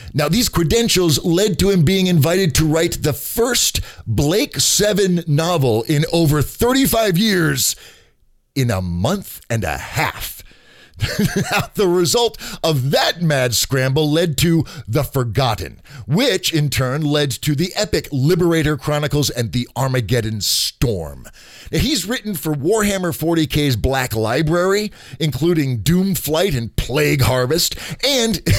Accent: American